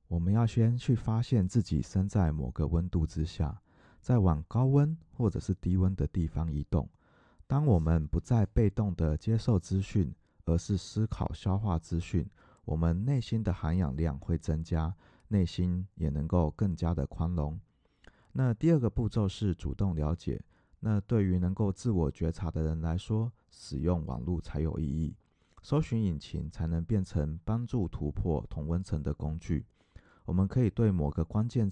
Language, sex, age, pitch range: Chinese, male, 30-49, 80-105 Hz